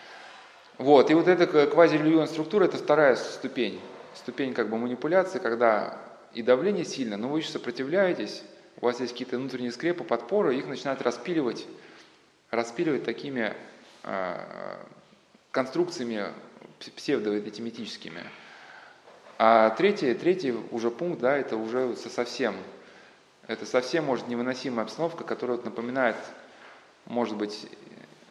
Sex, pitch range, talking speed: male, 120-165 Hz, 120 wpm